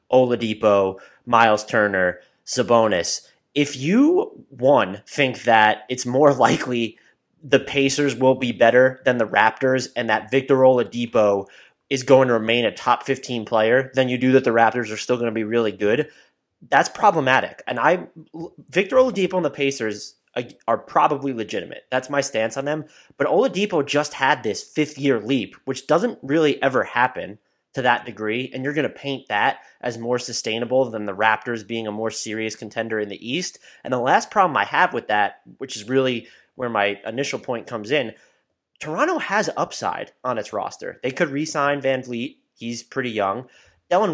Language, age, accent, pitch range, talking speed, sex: English, 30-49, American, 115-140 Hz, 175 wpm, male